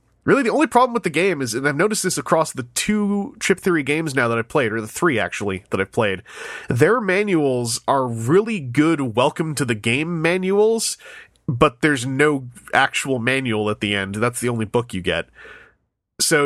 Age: 30-49